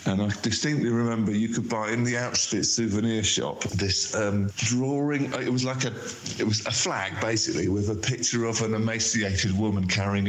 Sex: male